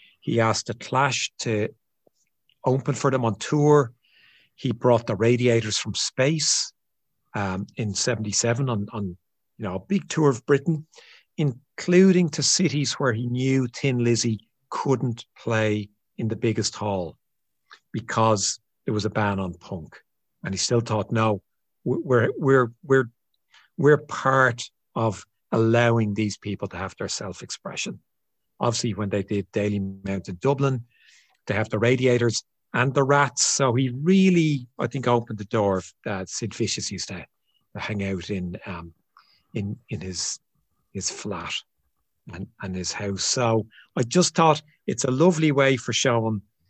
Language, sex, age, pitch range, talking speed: English, male, 50-69, 105-135 Hz, 145 wpm